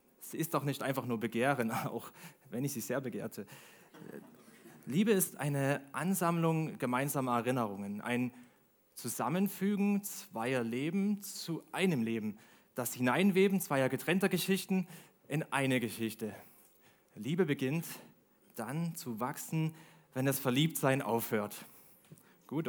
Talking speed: 115 wpm